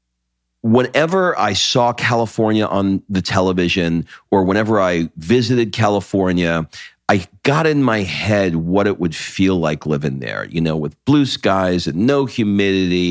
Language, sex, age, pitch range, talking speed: English, male, 40-59, 85-125 Hz, 145 wpm